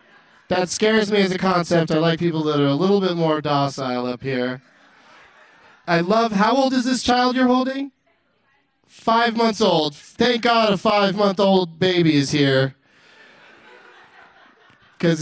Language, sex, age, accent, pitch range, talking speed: English, male, 30-49, American, 155-215 Hz, 160 wpm